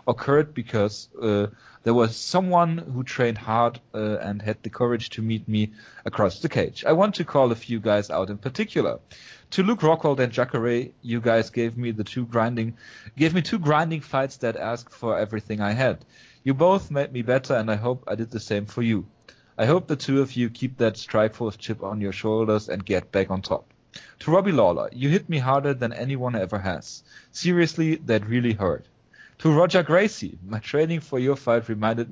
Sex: male